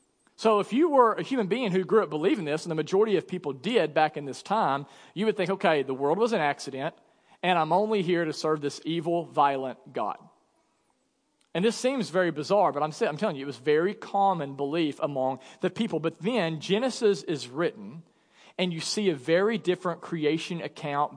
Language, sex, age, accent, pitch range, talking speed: English, male, 40-59, American, 155-215 Hz, 200 wpm